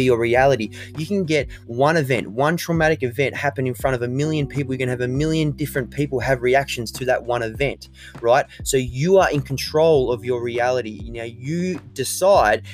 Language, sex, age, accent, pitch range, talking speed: English, male, 20-39, Australian, 115-130 Hz, 205 wpm